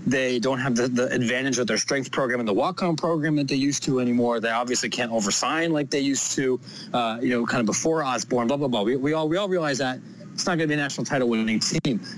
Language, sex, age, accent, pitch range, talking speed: English, male, 30-49, American, 125-180 Hz, 260 wpm